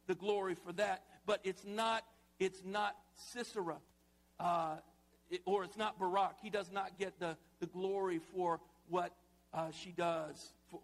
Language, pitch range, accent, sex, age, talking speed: English, 175-220 Hz, American, male, 50-69, 160 wpm